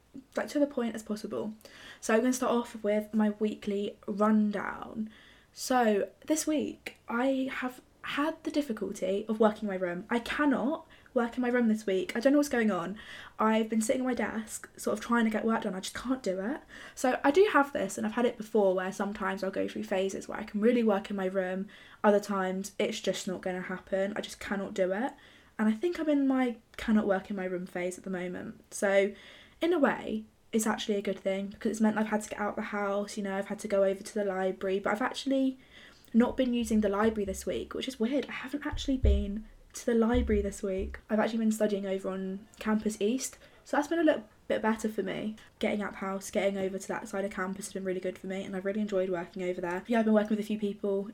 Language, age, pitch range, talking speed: English, 10-29, 195-235 Hz, 250 wpm